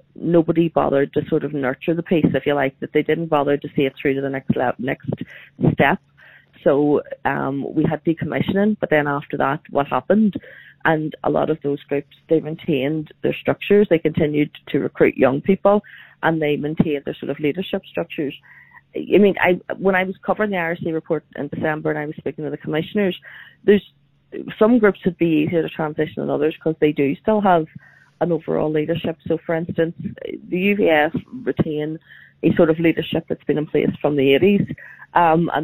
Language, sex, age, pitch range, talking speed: English, female, 30-49, 150-175 Hz, 195 wpm